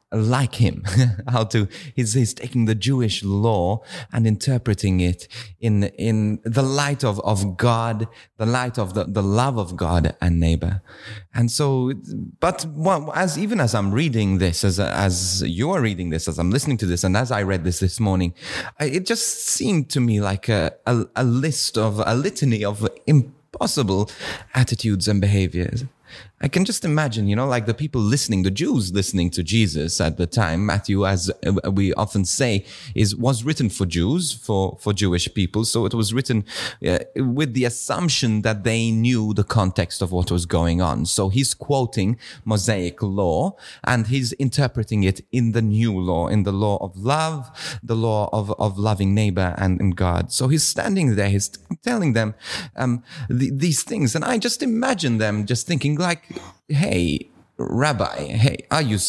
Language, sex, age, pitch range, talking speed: English, male, 30-49, 100-135 Hz, 180 wpm